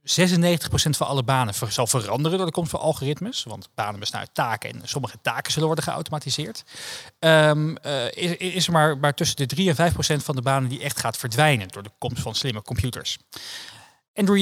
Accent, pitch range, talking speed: Dutch, 120-160 Hz, 190 wpm